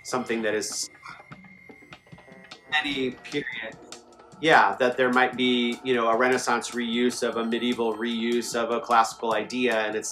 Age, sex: 30-49, male